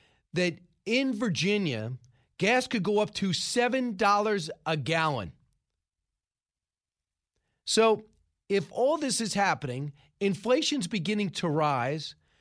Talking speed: 100 wpm